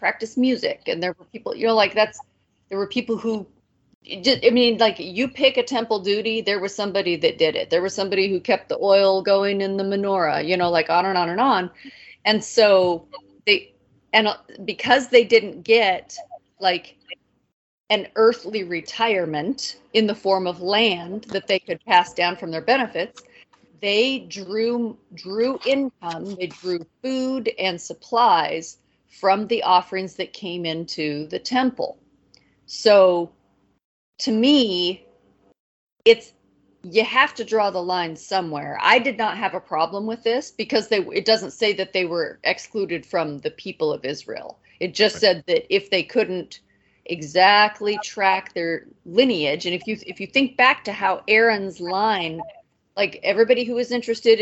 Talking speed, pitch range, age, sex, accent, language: 165 wpm, 180-235 Hz, 40-59, female, American, English